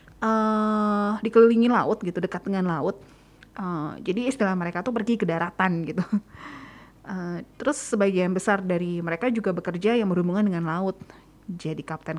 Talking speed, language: 150 wpm, Indonesian